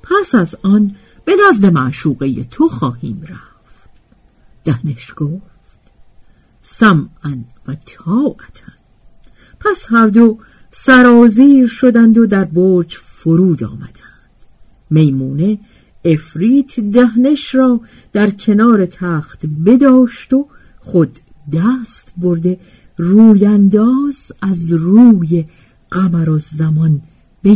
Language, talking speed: Persian, 95 wpm